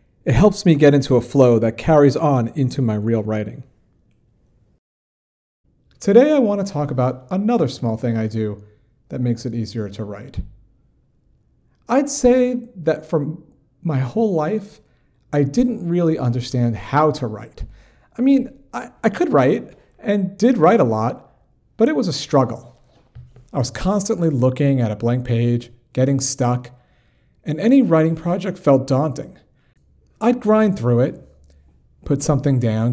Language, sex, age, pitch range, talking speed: English, male, 40-59, 120-175 Hz, 150 wpm